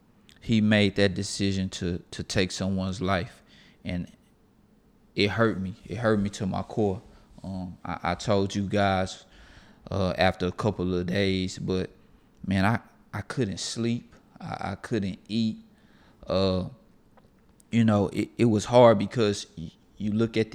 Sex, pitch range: male, 95-110 Hz